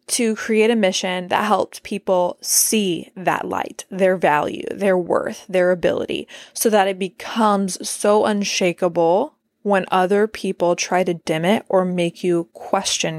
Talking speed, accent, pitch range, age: 150 wpm, American, 180-210 Hz, 20-39